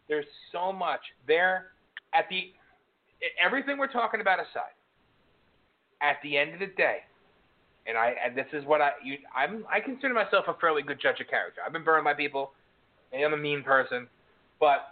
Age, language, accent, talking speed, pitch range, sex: 30-49, English, American, 185 wpm, 140-195 Hz, male